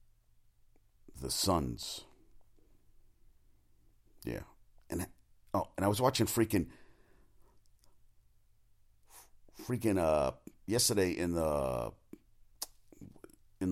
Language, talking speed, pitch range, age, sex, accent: English, 70 wpm, 95-130 Hz, 50-69, male, American